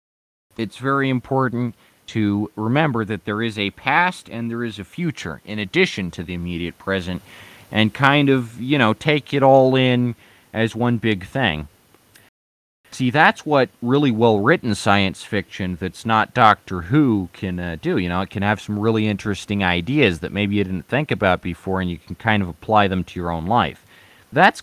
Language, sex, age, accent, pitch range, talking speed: English, male, 30-49, American, 95-130 Hz, 185 wpm